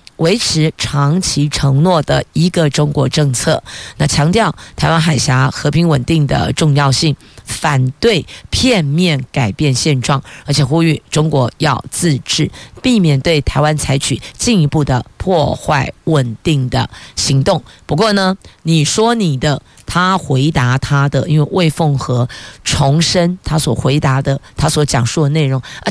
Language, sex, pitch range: Chinese, female, 135-170 Hz